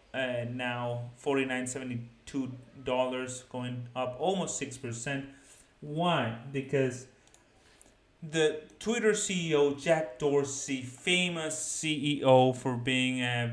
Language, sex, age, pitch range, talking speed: English, male, 30-49, 120-145 Hz, 110 wpm